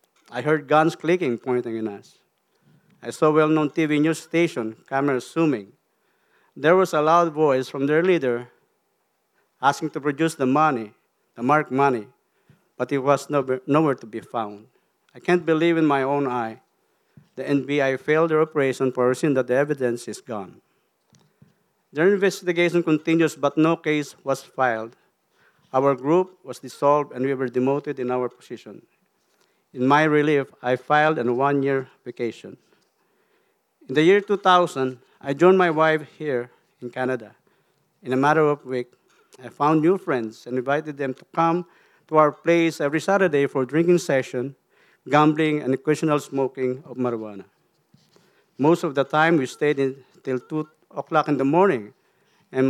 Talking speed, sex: 160 wpm, male